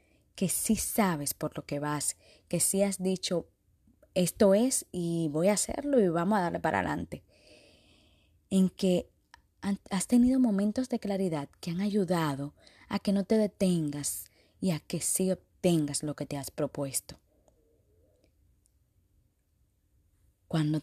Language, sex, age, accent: Spanish, female, 20-39, American